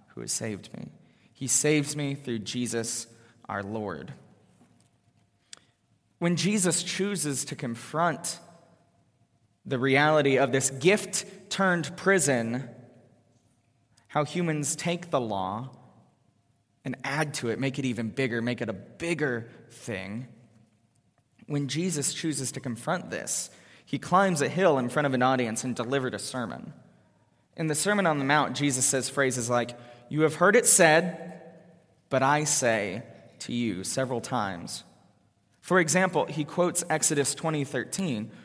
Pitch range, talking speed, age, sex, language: 120-155 Hz, 135 wpm, 20-39, male, English